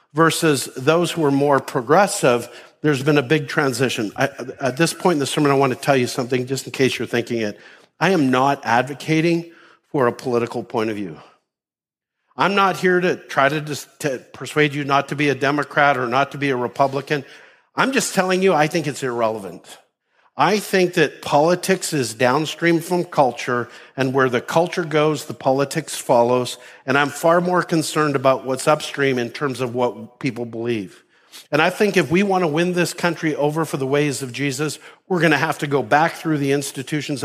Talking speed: 195 wpm